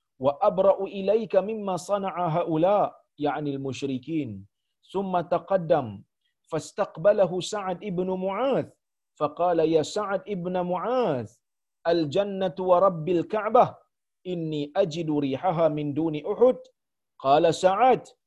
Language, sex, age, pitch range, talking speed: Malayalam, male, 40-59, 145-185 Hz, 95 wpm